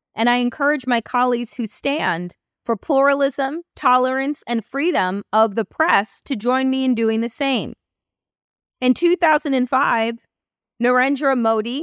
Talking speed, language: 130 wpm, English